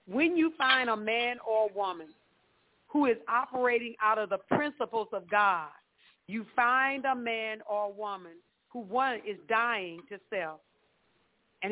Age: 40-59